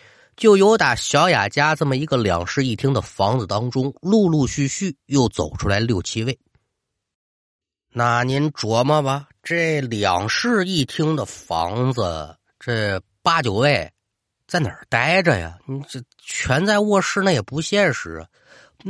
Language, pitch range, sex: Chinese, 115-185 Hz, male